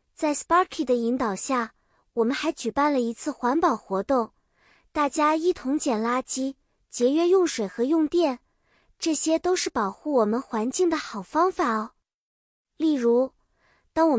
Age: 20-39